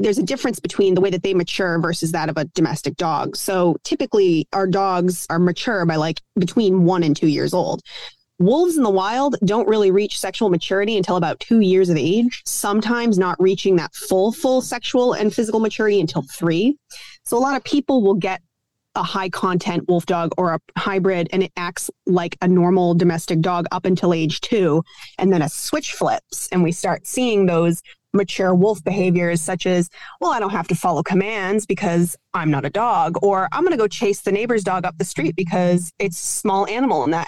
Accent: American